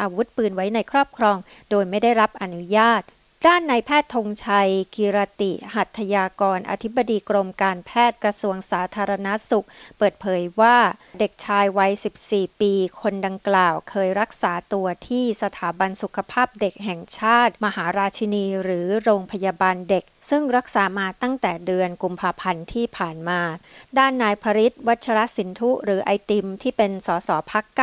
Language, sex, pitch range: Thai, female, 190-235 Hz